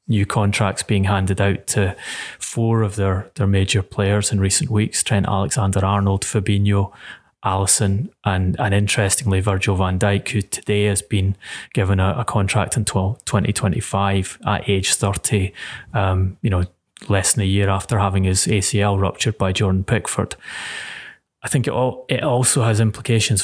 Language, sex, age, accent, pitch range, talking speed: English, male, 30-49, British, 100-110 Hz, 160 wpm